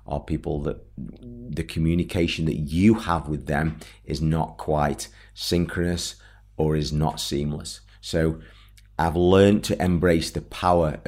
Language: English